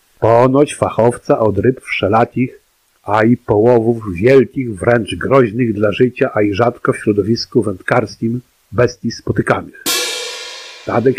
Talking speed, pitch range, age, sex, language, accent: 120 wpm, 105-130 Hz, 50-69, male, Polish, native